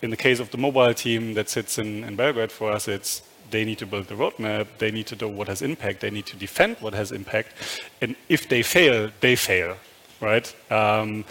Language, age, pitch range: English, 30-49, 110-130 Hz